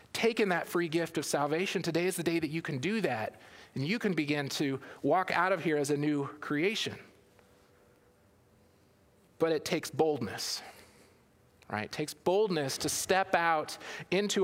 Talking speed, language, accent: 165 wpm, English, American